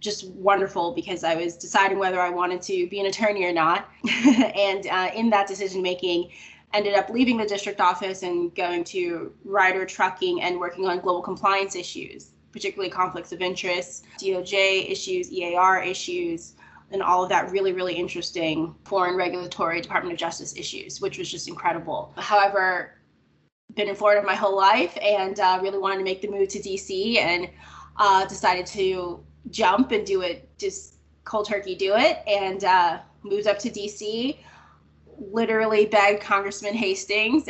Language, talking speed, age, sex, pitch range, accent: English, 165 wpm, 20-39, female, 180-215 Hz, American